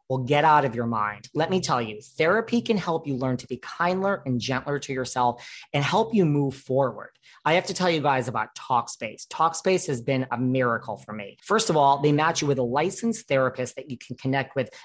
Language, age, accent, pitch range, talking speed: English, 40-59, American, 125-160 Hz, 230 wpm